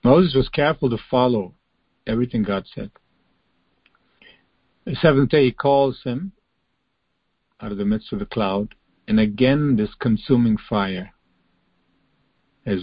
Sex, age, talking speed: male, 50-69, 125 wpm